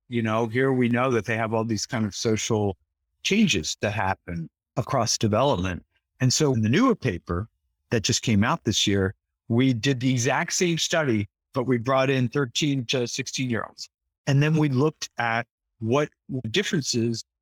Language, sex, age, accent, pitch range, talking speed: English, male, 50-69, American, 100-130 Hz, 180 wpm